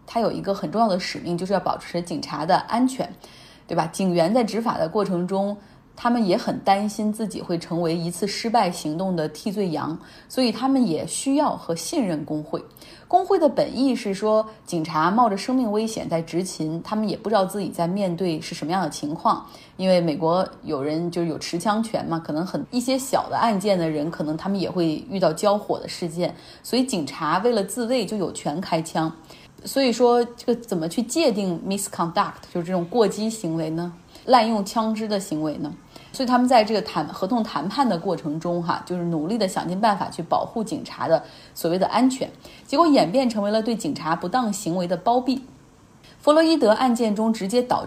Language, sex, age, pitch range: Chinese, female, 20-39, 170-240 Hz